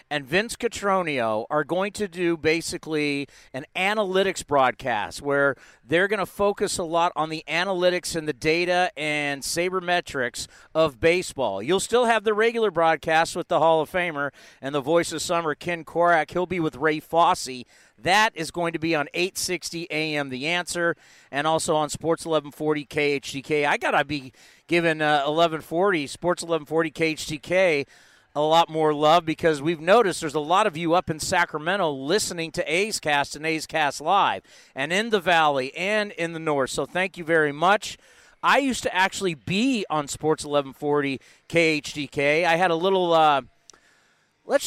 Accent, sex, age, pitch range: American, male, 40-59, 150-180 Hz